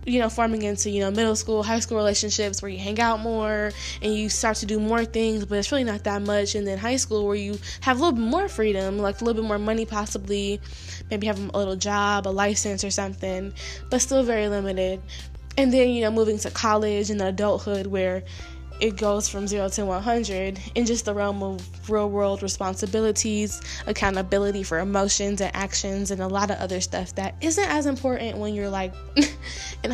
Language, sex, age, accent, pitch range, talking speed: English, female, 10-29, American, 195-220 Hz, 205 wpm